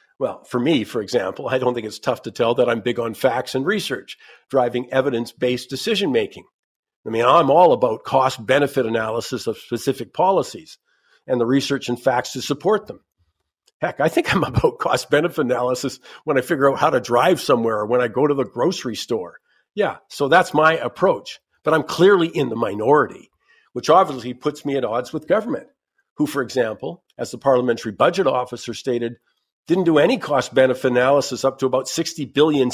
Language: English